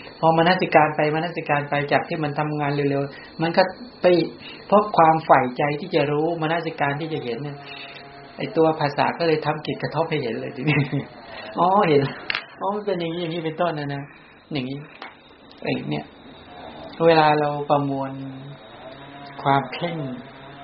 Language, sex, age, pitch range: English, male, 60-79, 125-150 Hz